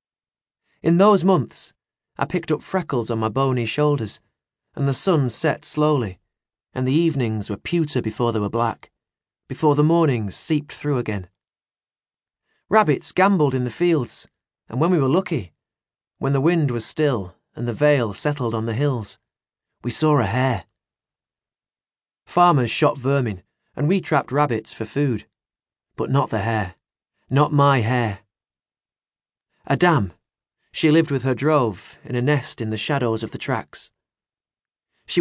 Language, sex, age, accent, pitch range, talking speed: English, male, 30-49, British, 115-150 Hz, 150 wpm